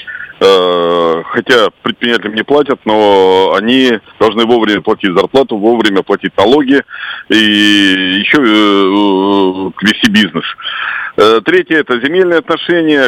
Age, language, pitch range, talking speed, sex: 40-59, Russian, 100-125 Hz, 95 wpm, male